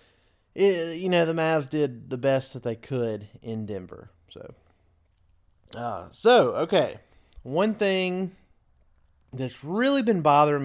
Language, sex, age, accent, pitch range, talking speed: English, male, 20-39, American, 110-135 Hz, 130 wpm